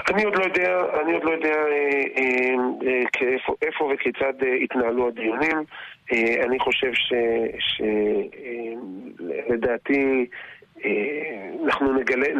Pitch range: 120-150 Hz